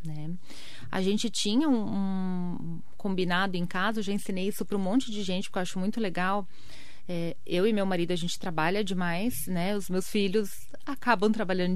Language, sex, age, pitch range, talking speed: Portuguese, female, 30-49, 175-220 Hz, 195 wpm